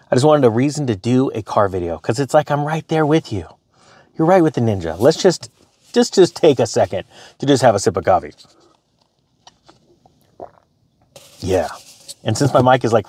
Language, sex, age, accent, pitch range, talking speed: English, male, 30-49, American, 110-145 Hz, 200 wpm